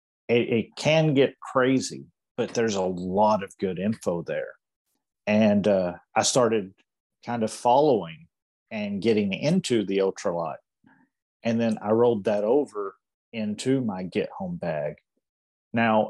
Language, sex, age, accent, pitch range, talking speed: English, male, 40-59, American, 105-160 Hz, 130 wpm